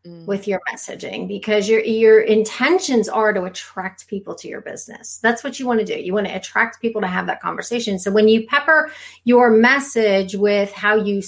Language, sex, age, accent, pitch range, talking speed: English, female, 30-49, American, 185-230 Hz, 200 wpm